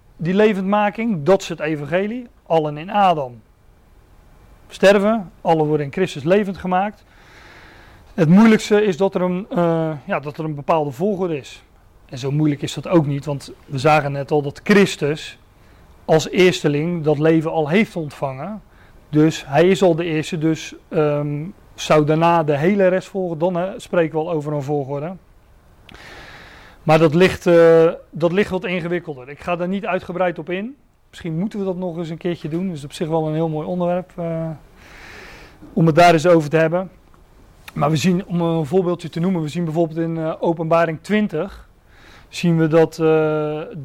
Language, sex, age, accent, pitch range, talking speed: Dutch, male, 40-59, Dutch, 150-185 Hz, 175 wpm